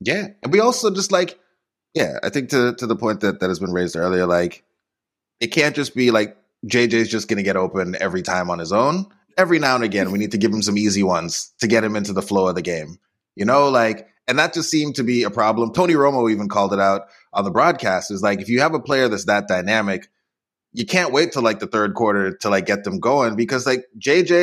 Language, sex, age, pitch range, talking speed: English, male, 20-39, 105-140 Hz, 255 wpm